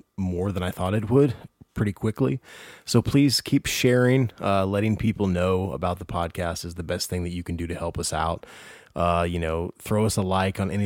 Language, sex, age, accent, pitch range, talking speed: English, male, 20-39, American, 85-110 Hz, 220 wpm